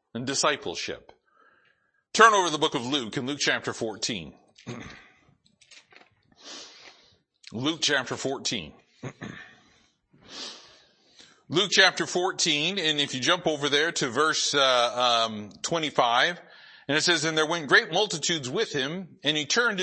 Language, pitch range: English, 145-190 Hz